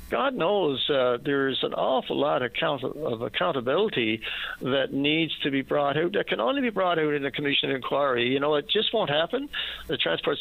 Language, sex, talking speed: English, male, 210 wpm